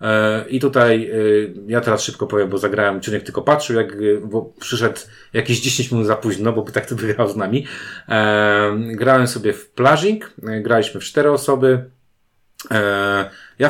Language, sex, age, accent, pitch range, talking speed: Polish, male, 40-59, native, 100-120 Hz, 155 wpm